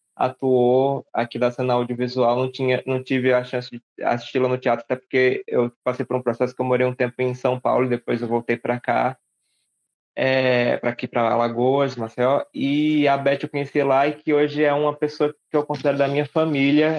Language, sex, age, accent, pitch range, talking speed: Portuguese, male, 20-39, Brazilian, 125-155 Hz, 210 wpm